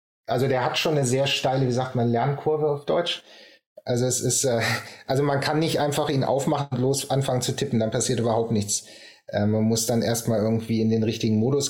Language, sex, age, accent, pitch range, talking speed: German, male, 30-49, German, 110-130 Hz, 215 wpm